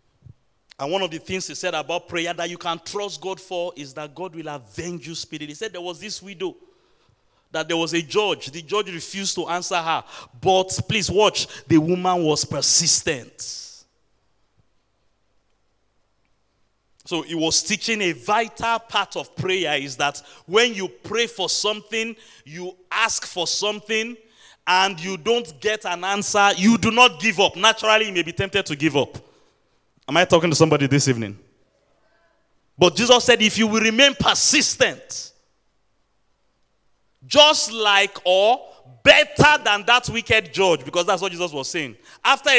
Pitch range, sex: 145-200 Hz, male